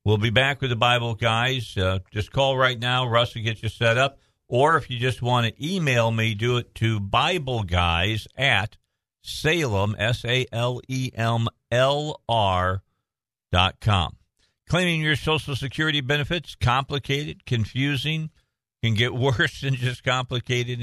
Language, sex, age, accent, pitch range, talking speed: English, male, 50-69, American, 105-135 Hz, 135 wpm